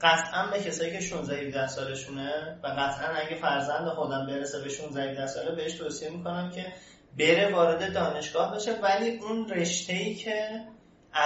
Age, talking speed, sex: 30-49, 150 wpm, male